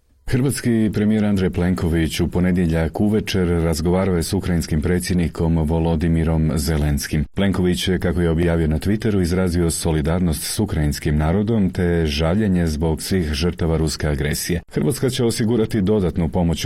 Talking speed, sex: 135 wpm, male